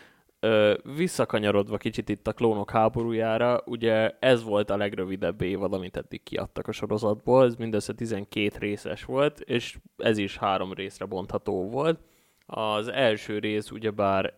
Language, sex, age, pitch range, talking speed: Hungarian, male, 20-39, 100-110 Hz, 140 wpm